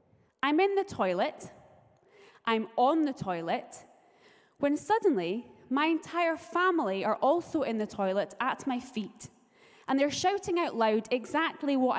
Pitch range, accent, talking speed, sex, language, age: 215-295 Hz, British, 140 wpm, female, English, 20-39